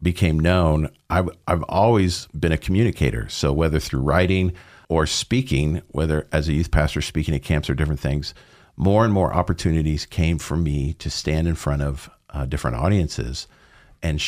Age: 50-69